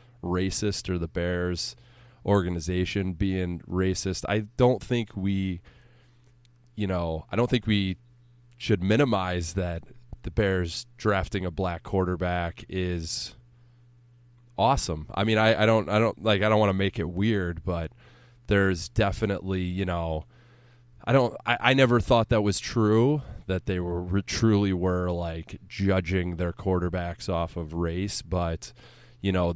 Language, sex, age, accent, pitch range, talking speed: English, male, 20-39, American, 90-115 Hz, 145 wpm